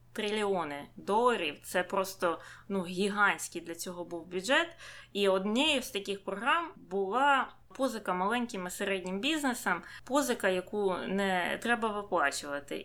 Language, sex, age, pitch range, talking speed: Ukrainian, female, 20-39, 175-210 Hz, 120 wpm